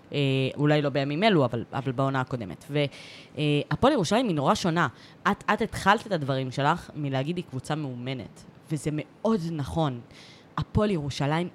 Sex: female